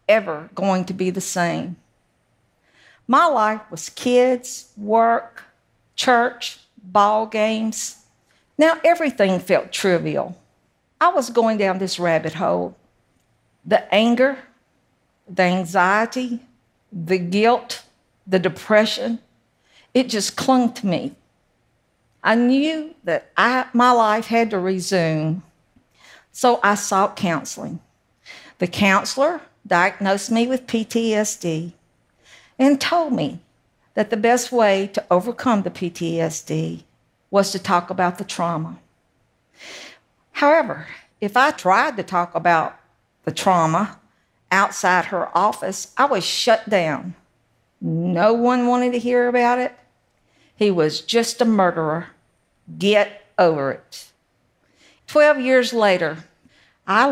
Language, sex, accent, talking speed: English, female, American, 115 wpm